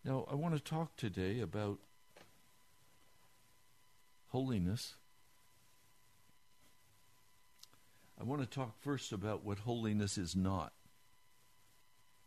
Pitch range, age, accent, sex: 100-125 Hz, 60-79, American, male